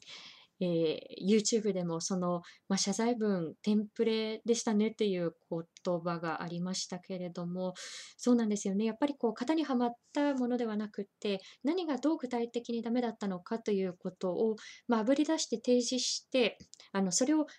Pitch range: 185-250 Hz